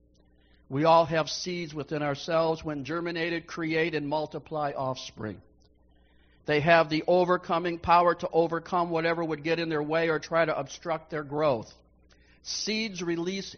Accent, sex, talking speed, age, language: American, male, 145 wpm, 60-79, English